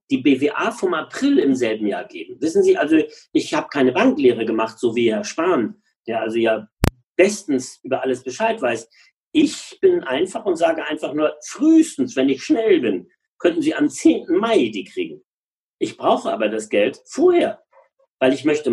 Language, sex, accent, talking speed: German, male, German, 180 wpm